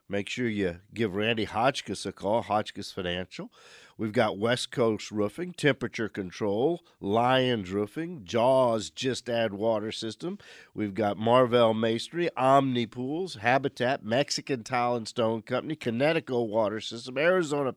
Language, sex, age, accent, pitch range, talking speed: English, male, 50-69, American, 115-155 Hz, 135 wpm